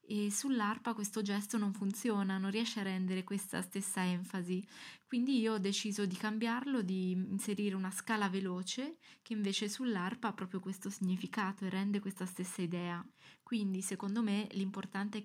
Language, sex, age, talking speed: Italian, female, 20-39, 160 wpm